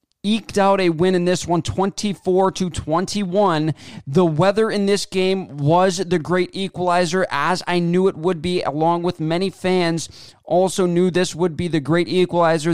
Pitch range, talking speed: 155-180 Hz, 165 wpm